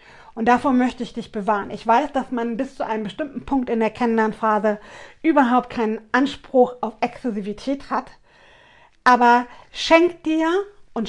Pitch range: 220-250 Hz